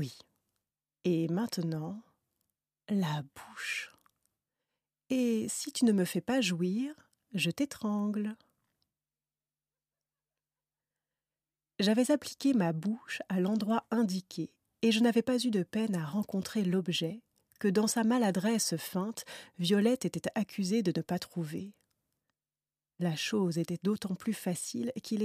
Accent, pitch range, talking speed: French, 170-220 Hz, 120 wpm